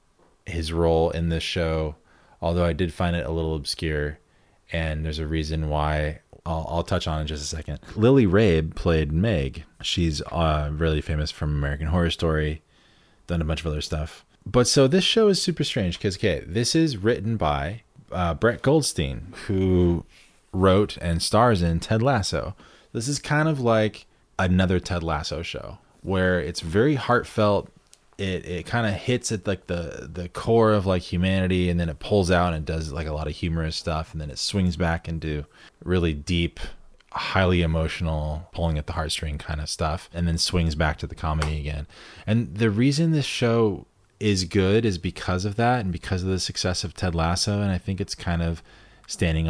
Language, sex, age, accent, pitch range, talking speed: English, male, 20-39, American, 80-105 Hz, 190 wpm